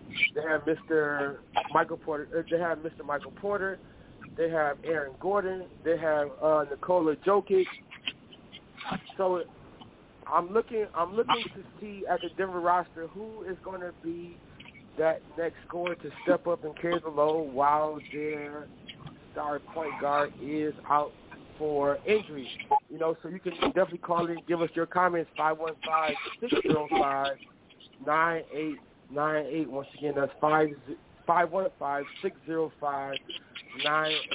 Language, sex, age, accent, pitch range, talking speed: English, male, 30-49, American, 150-175 Hz, 145 wpm